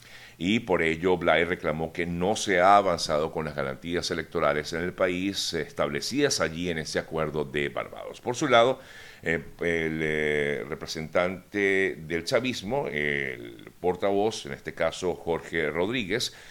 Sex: male